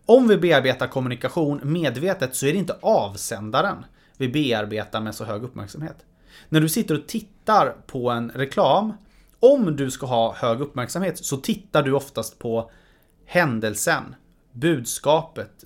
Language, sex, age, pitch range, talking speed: English, male, 30-49, 125-175 Hz, 140 wpm